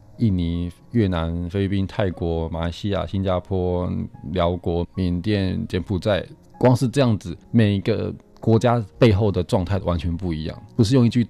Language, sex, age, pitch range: Chinese, male, 20-39, 90-115 Hz